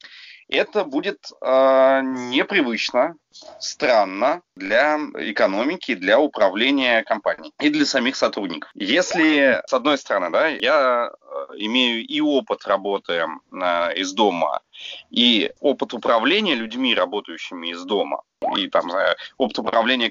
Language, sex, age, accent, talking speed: Russian, male, 30-49, native, 115 wpm